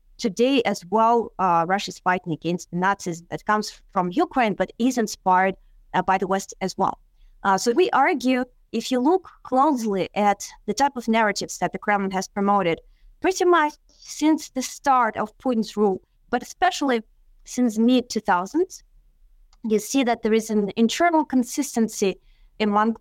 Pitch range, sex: 205-280 Hz, female